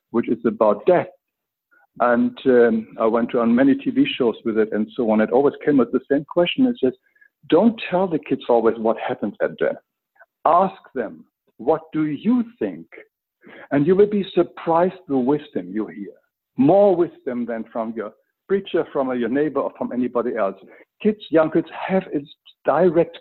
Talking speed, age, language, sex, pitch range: 185 wpm, 60-79, English, male, 140-210 Hz